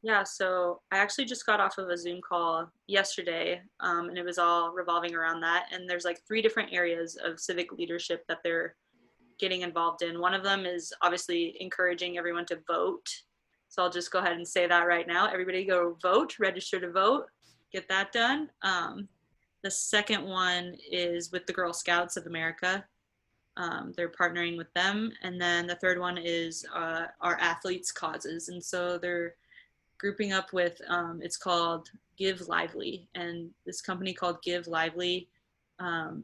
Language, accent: English, American